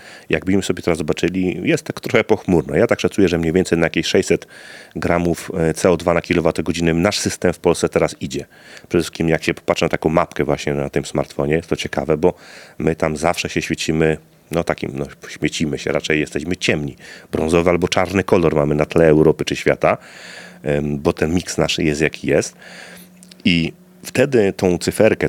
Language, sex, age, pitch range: Polish, male, 30-49, 75-90 Hz